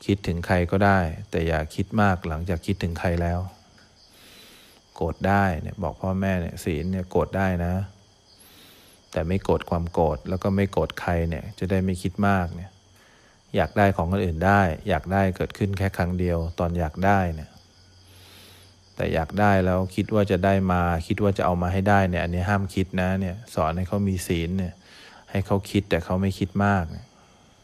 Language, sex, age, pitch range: English, male, 20-39, 90-100 Hz